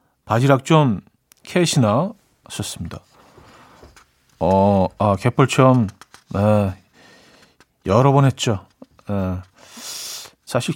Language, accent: Korean, native